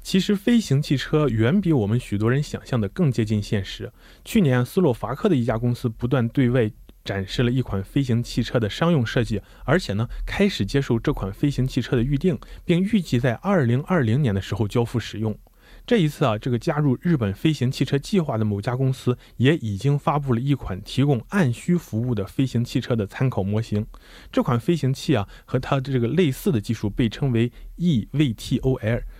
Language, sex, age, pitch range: Korean, male, 20-39, 110-145 Hz